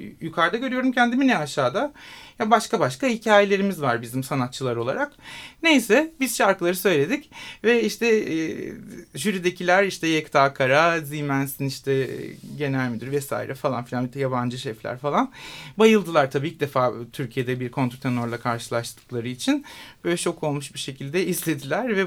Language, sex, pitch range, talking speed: Turkish, male, 135-210 Hz, 140 wpm